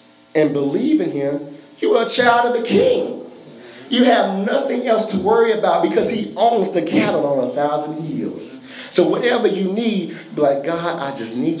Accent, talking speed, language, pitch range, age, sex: American, 190 wpm, English, 145-220 Hz, 40-59, male